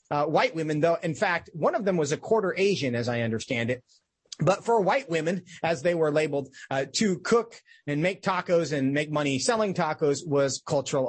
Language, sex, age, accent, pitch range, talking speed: English, male, 30-49, American, 145-200 Hz, 205 wpm